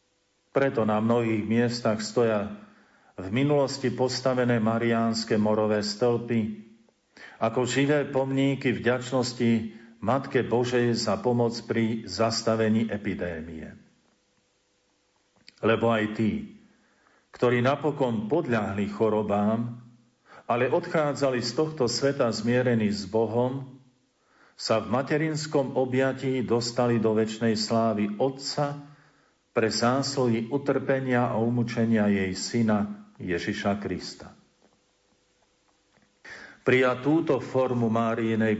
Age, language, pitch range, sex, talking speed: 50-69, Slovak, 105-130 Hz, male, 95 wpm